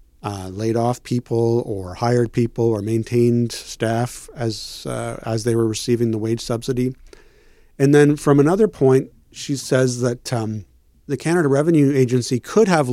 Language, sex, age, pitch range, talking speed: English, male, 40-59, 110-130 Hz, 160 wpm